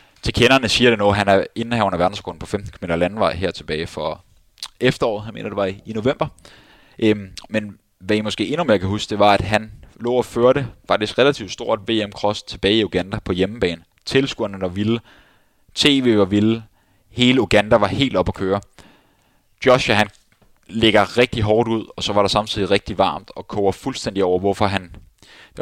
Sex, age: male, 20-39